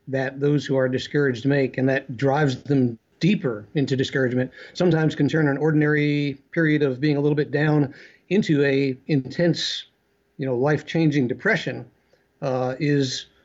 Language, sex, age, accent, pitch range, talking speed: English, male, 60-79, American, 130-155 Hz, 150 wpm